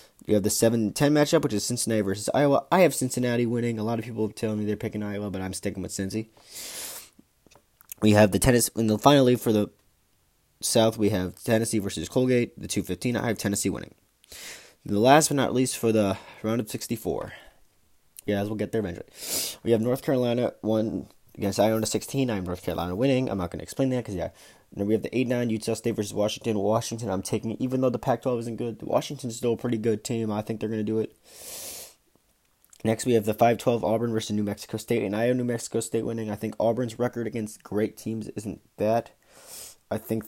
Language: English